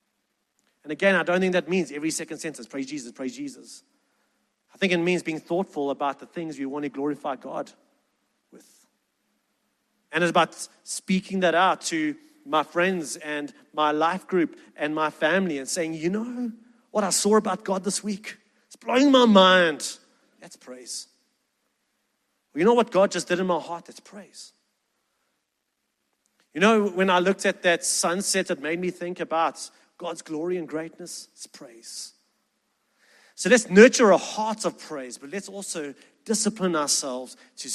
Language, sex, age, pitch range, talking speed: English, male, 30-49, 165-220 Hz, 165 wpm